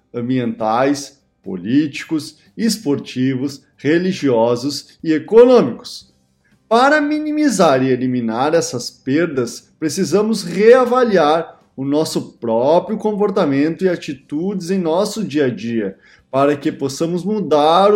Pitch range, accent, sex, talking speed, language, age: 130-200 Hz, Brazilian, male, 95 wpm, Portuguese, 20-39